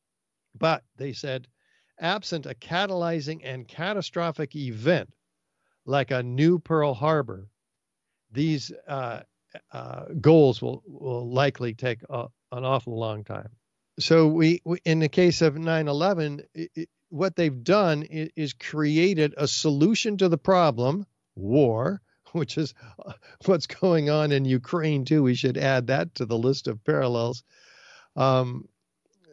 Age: 50-69